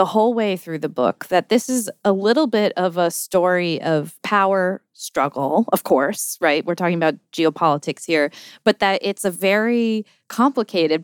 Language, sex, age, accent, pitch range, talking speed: English, female, 20-39, American, 165-215 Hz, 175 wpm